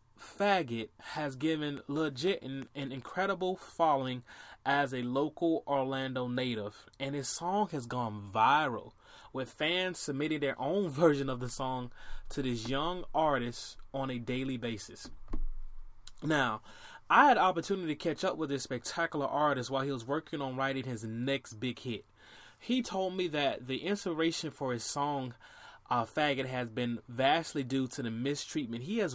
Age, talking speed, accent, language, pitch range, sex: 20-39, 155 wpm, American, English, 125-155 Hz, male